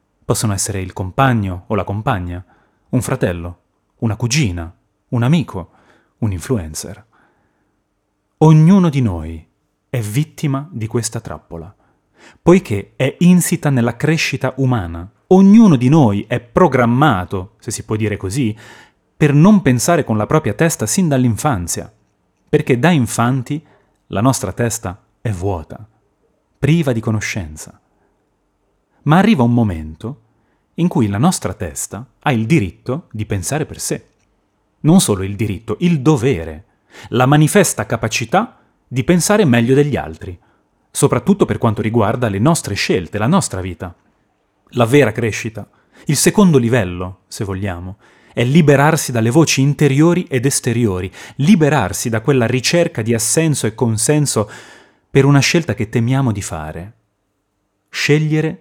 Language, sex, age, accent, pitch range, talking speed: Italian, male, 30-49, native, 100-145 Hz, 135 wpm